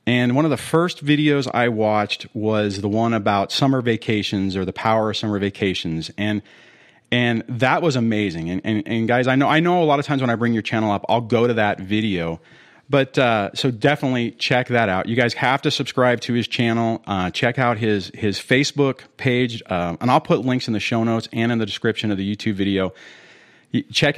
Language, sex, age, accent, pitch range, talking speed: English, male, 40-59, American, 105-140 Hz, 220 wpm